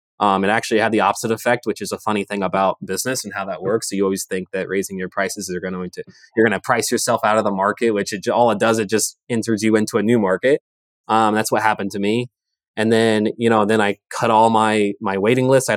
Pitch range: 95-115 Hz